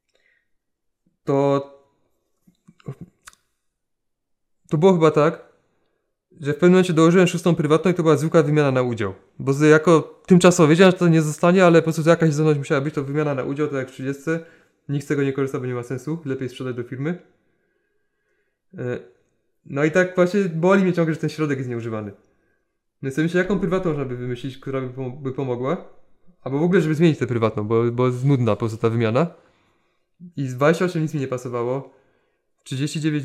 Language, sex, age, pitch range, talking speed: Polish, male, 20-39, 135-165 Hz, 185 wpm